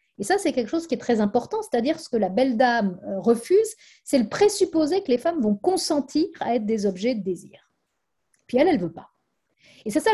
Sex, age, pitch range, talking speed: female, 50-69, 205-300 Hz, 225 wpm